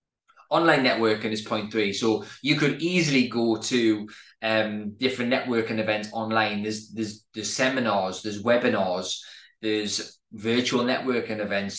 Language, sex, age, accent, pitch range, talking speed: English, male, 20-39, British, 105-135 Hz, 130 wpm